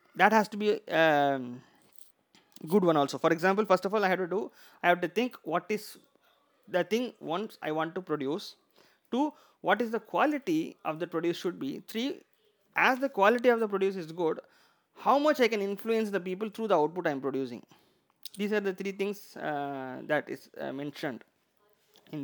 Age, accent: 30-49, native